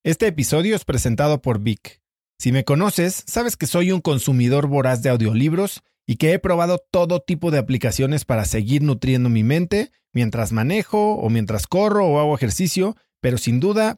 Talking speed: 175 wpm